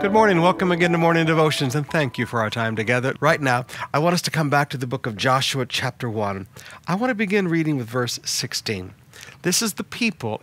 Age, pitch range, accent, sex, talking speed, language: 50-69, 120-165 Hz, American, male, 235 wpm, English